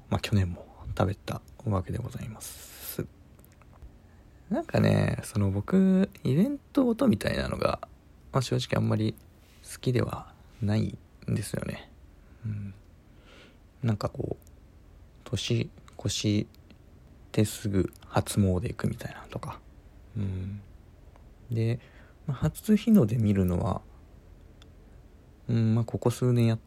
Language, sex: Japanese, male